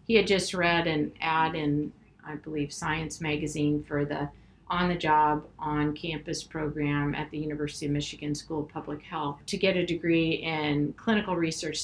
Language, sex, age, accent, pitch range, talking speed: English, female, 50-69, American, 150-180 Hz, 165 wpm